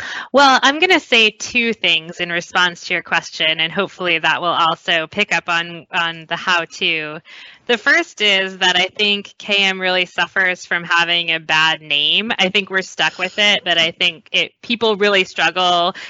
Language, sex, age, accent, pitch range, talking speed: English, female, 20-39, American, 170-205 Hz, 185 wpm